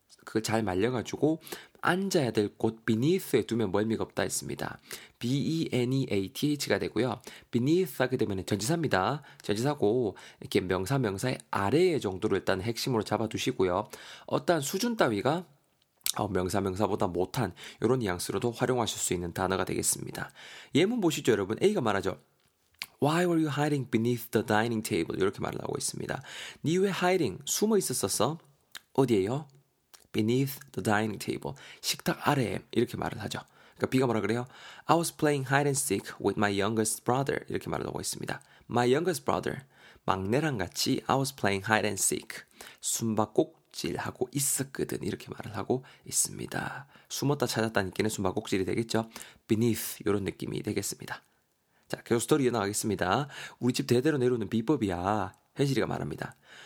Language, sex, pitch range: Korean, male, 105-145 Hz